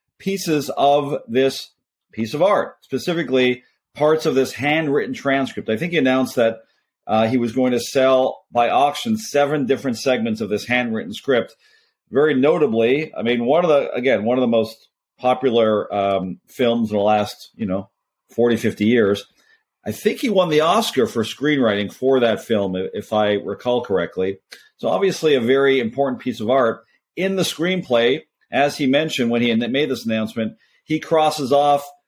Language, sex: English, male